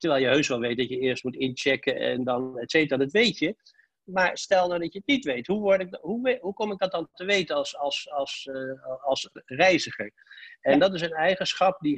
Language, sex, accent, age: Dutch, male, Dutch, 60-79